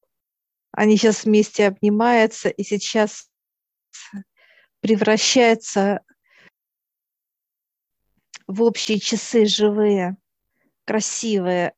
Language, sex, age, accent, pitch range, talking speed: Russian, female, 50-69, native, 200-220 Hz, 60 wpm